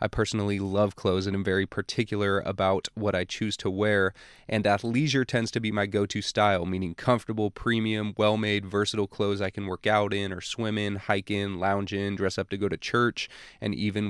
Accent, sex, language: American, male, English